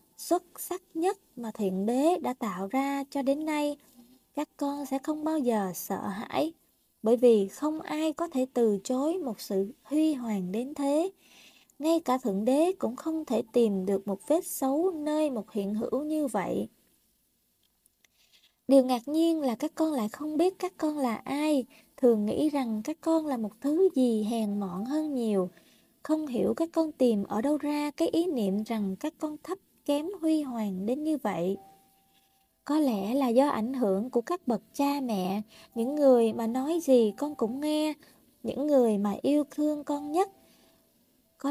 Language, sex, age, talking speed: Vietnamese, female, 20-39, 180 wpm